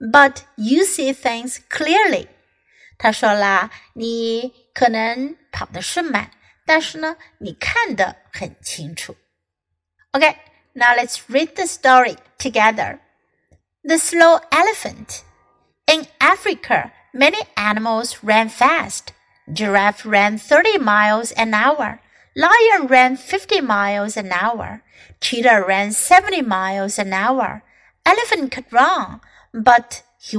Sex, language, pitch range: female, Chinese, 215-315 Hz